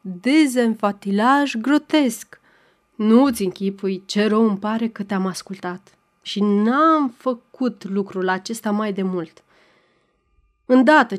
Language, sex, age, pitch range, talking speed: Romanian, female, 20-39, 190-230 Hz, 100 wpm